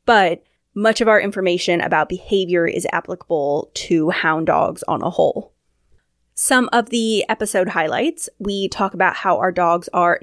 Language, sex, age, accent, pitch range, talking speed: English, female, 20-39, American, 180-245 Hz, 160 wpm